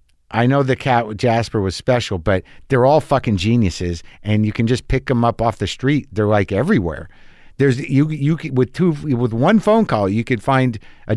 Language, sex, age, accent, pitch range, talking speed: English, male, 50-69, American, 110-145 Hz, 210 wpm